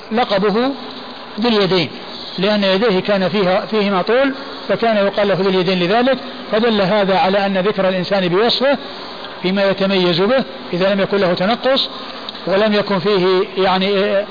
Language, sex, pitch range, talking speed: Arabic, male, 185-225 Hz, 135 wpm